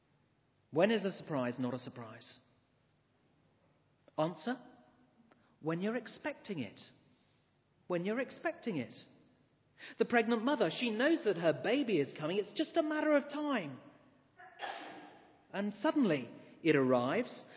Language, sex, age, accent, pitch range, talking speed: English, male, 40-59, British, 155-260 Hz, 125 wpm